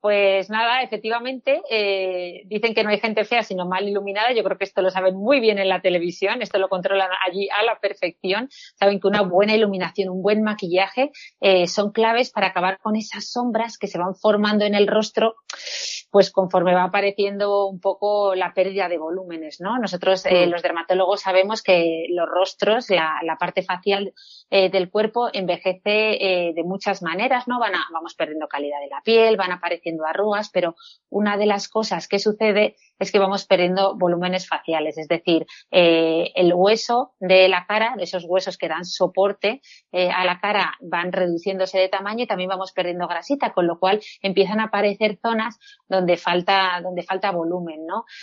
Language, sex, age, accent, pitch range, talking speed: Spanish, female, 30-49, Spanish, 180-215 Hz, 185 wpm